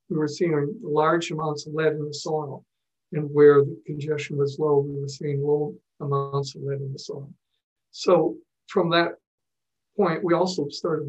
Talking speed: 180 wpm